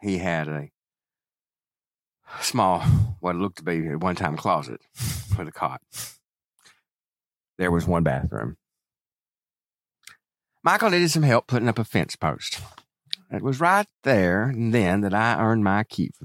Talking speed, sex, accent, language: 145 wpm, male, American, English